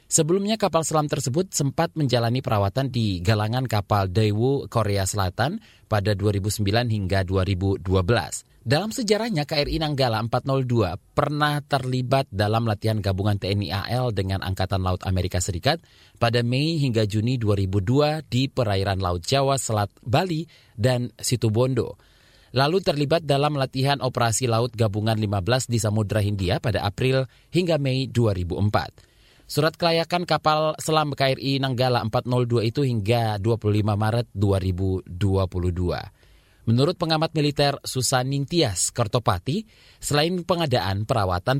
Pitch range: 105-140 Hz